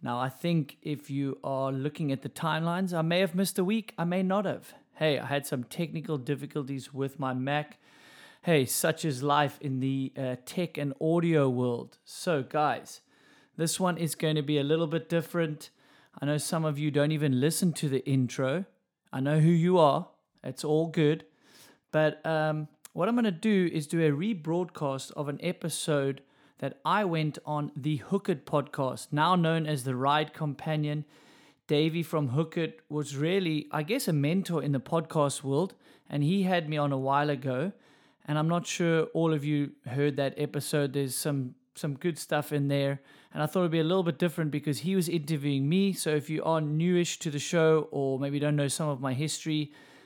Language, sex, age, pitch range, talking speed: English, male, 30-49, 140-165 Hz, 200 wpm